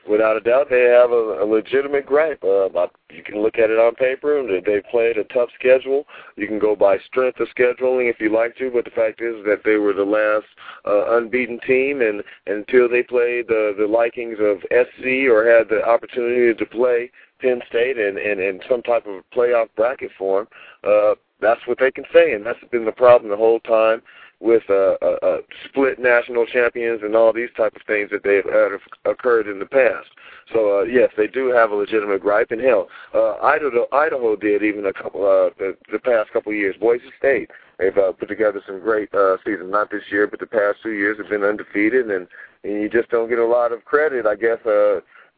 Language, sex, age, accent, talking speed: English, male, 40-59, American, 220 wpm